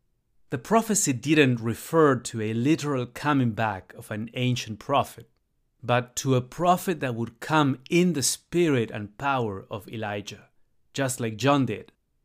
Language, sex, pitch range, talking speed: English, male, 115-140 Hz, 150 wpm